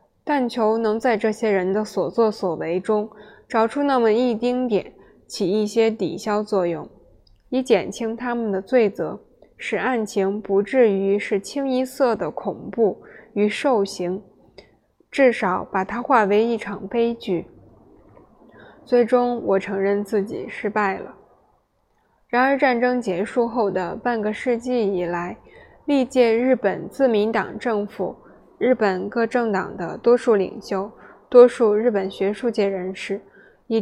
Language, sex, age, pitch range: Chinese, female, 20-39, 195-235 Hz